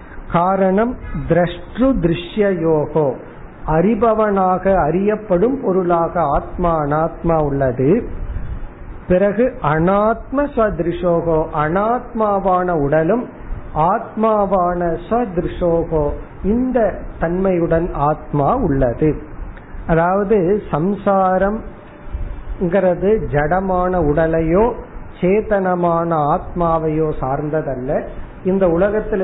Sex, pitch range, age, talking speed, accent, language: male, 155-200 Hz, 50-69, 55 wpm, native, Tamil